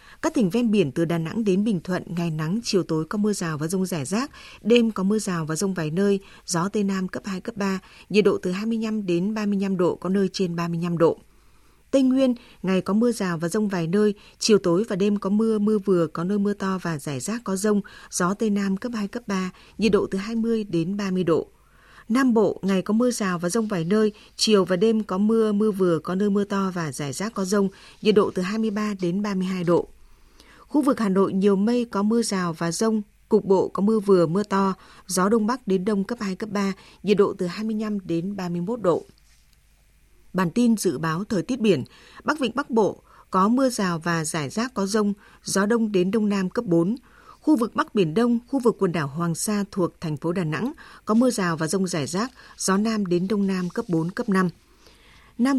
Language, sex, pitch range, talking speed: Vietnamese, female, 185-220 Hz, 230 wpm